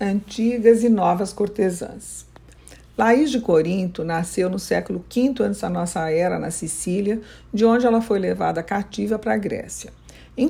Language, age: Portuguese, 60-79